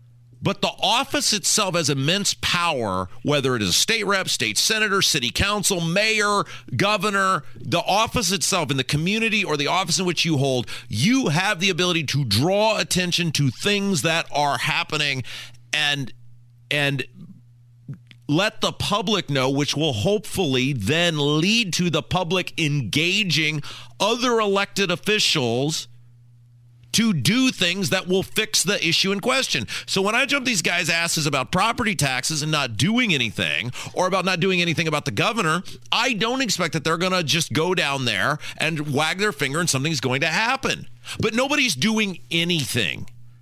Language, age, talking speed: English, 40-59, 165 wpm